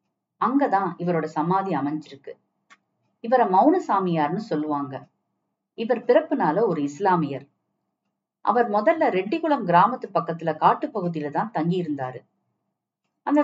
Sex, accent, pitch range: female, native, 155-235 Hz